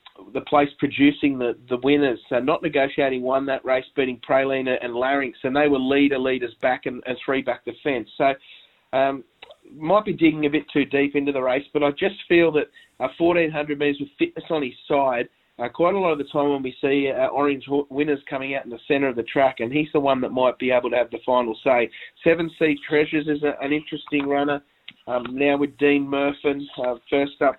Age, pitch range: 30-49, 130-150 Hz